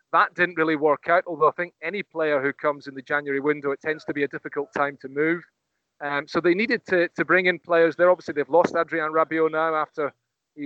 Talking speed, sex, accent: 240 wpm, male, British